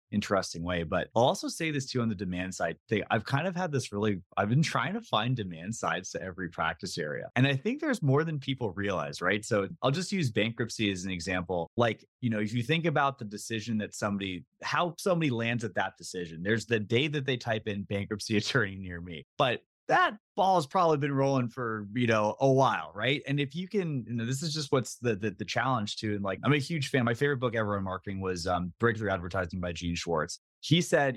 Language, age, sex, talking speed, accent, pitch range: English, 20-39, male, 235 wpm, American, 100-140 Hz